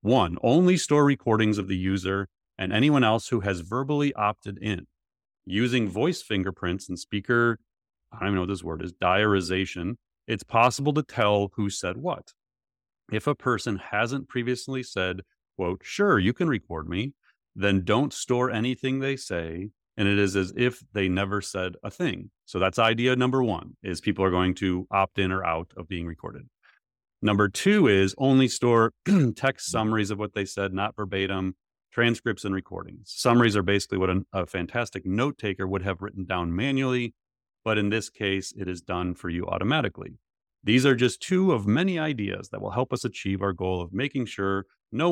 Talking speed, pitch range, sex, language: 185 wpm, 95-125 Hz, male, English